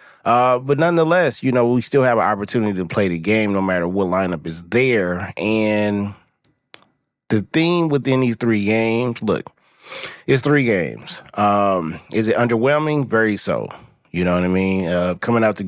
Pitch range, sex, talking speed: 95-115 Hz, male, 175 wpm